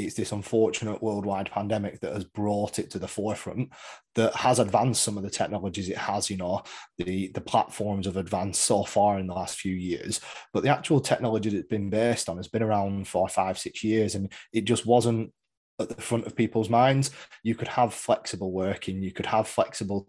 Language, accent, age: English, British, 20-39